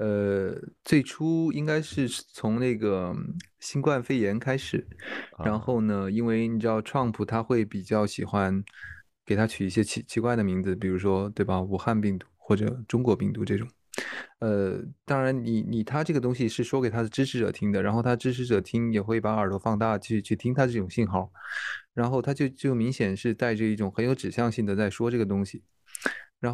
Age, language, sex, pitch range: 20-39, Chinese, male, 100-120 Hz